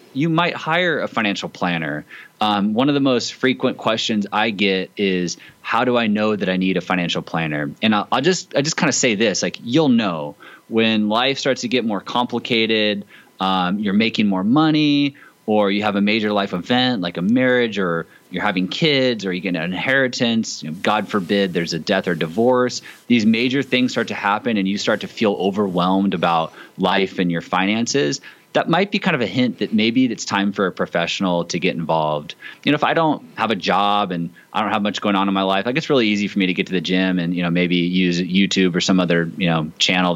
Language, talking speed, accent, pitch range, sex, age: English, 230 wpm, American, 90-120 Hz, male, 20-39